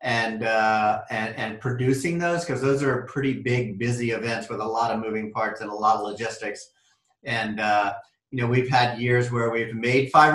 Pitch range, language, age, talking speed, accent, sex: 115-140 Hz, English, 40-59, 205 wpm, American, male